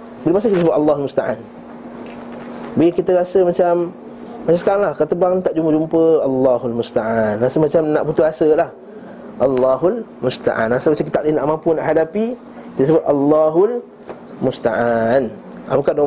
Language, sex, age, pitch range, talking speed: Malay, male, 20-39, 130-175 Hz, 155 wpm